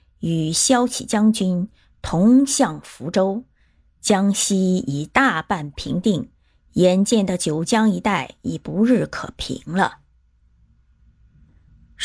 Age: 30-49